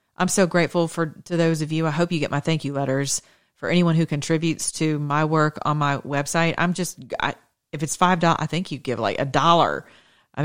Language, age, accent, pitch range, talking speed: English, 40-59, American, 140-170 Hz, 225 wpm